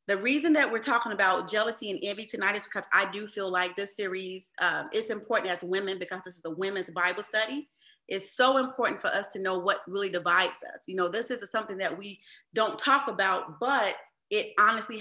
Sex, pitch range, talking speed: female, 190-235 Hz, 215 wpm